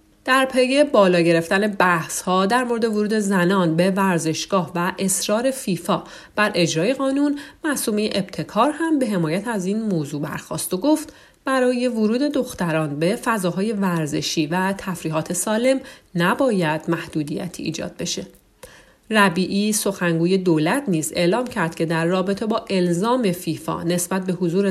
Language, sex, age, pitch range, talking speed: Persian, female, 40-59, 170-235 Hz, 140 wpm